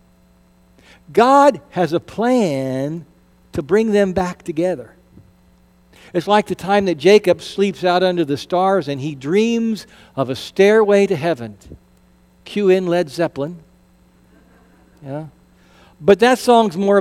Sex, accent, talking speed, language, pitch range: male, American, 130 wpm, English, 140-200 Hz